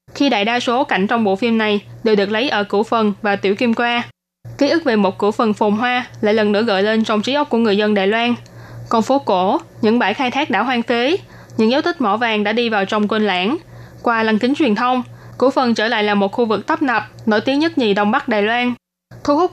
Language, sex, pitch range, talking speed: Vietnamese, female, 205-250 Hz, 265 wpm